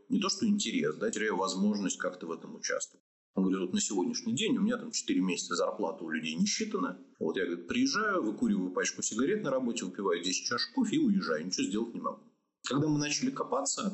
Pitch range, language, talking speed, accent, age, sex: 170-245 Hz, Russian, 205 wpm, native, 30-49, male